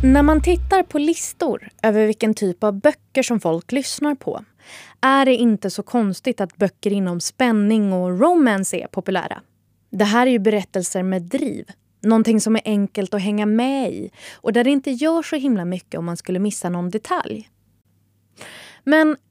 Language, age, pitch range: Swedish, 20-39, 180-250 Hz